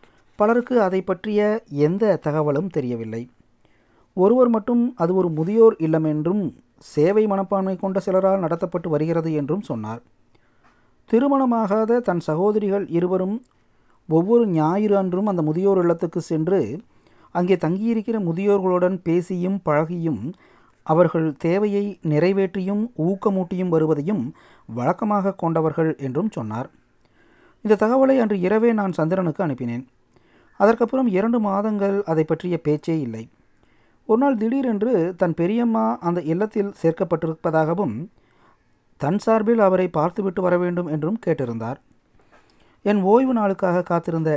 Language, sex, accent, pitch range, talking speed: Tamil, male, native, 155-205 Hz, 110 wpm